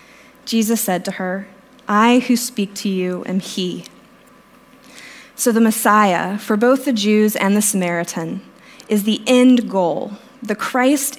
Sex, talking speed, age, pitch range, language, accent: female, 145 wpm, 20-39, 190-250 Hz, English, American